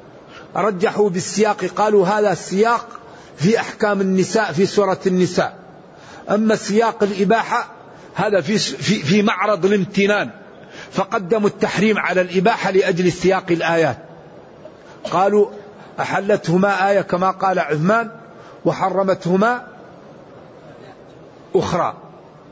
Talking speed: 95 wpm